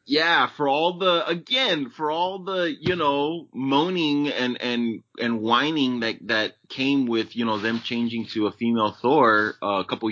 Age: 20-39